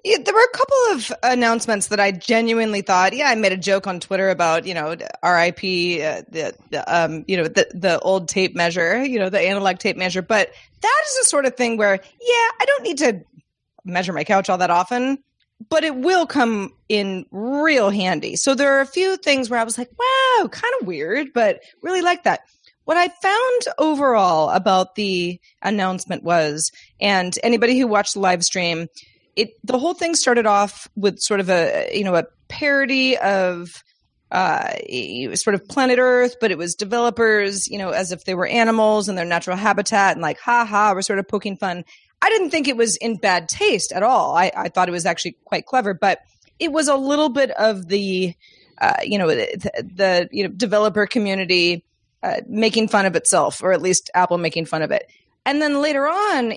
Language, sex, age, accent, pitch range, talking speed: English, female, 30-49, American, 185-270 Hz, 205 wpm